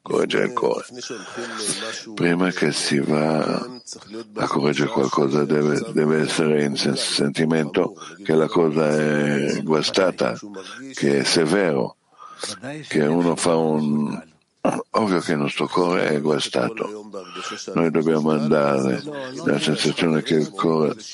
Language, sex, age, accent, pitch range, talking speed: Italian, male, 60-79, native, 70-85 Hz, 125 wpm